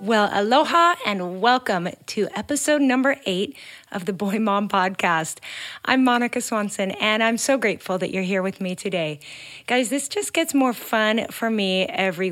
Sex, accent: female, American